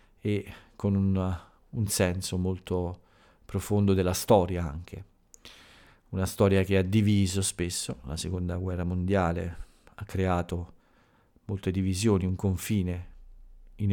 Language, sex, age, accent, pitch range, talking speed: Italian, male, 40-59, native, 85-105 Hz, 115 wpm